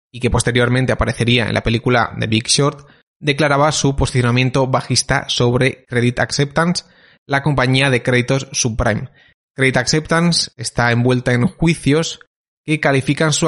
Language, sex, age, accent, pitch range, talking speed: Spanish, male, 30-49, Spanish, 120-140 Hz, 140 wpm